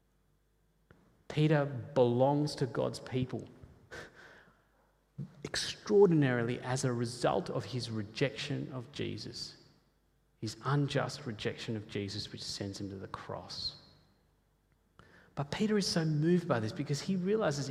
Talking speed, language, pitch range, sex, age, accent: 120 wpm, English, 110-155 Hz, male, 30-49, Australian